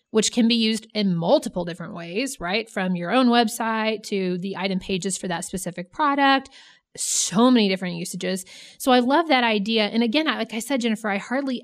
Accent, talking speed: American, 195 wpm